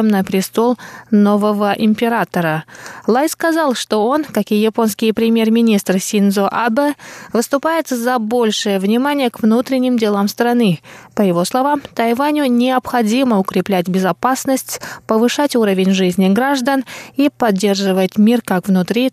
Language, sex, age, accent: Russian, female, 20-39, native